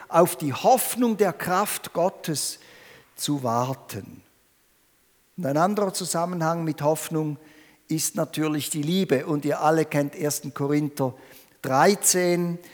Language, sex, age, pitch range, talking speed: German, male, 50-69, 160-210 Hz, 120 wpm